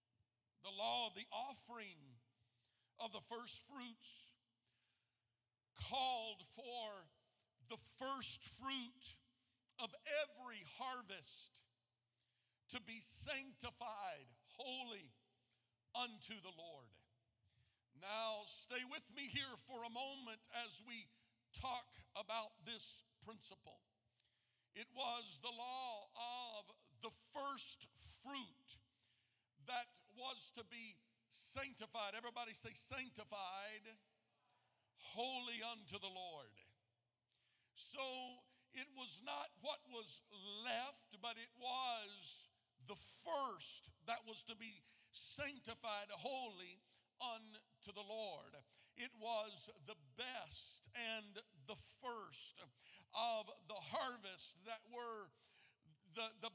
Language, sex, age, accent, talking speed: English, male, 50-69, American, 100 wpm